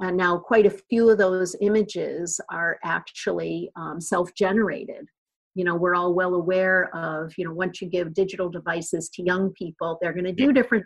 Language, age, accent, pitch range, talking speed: English, 50-69, American, 175-200 Hz, 190 wpm